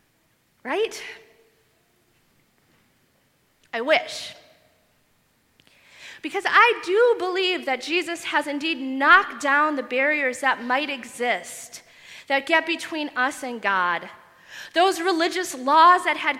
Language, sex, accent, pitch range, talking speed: English, female, American, 255-350 Hz, 105 wpm